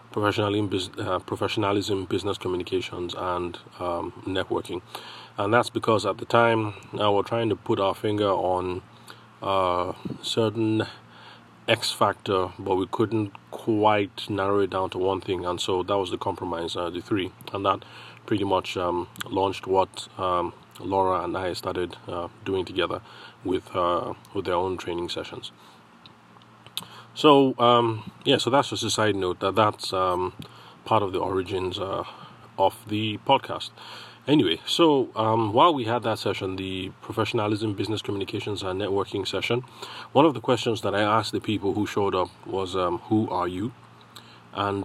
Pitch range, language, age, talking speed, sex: 95-110 Hz, English, 30-49, 160 wpm, male